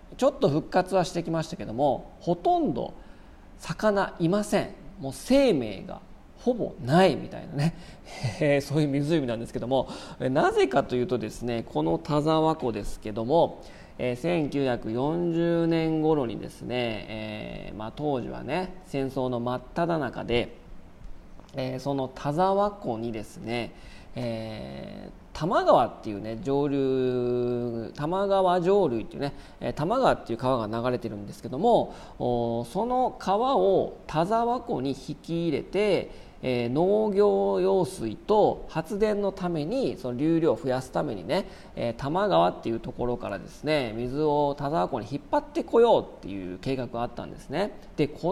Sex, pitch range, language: male, 120-185 Hz, Japanese